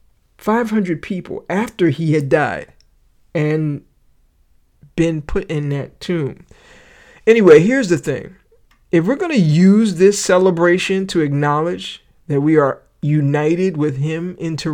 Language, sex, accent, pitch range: English, male, American, 145-180 Hz